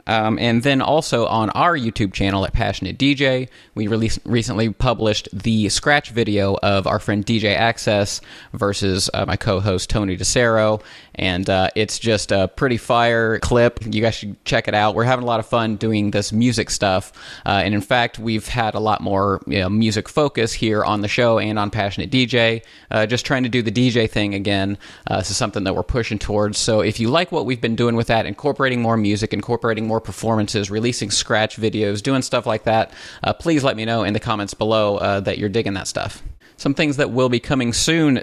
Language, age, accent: English, 30-49, American